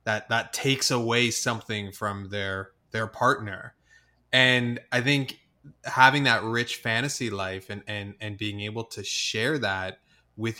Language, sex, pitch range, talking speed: English, male, 105-130 Hz, 145 wpm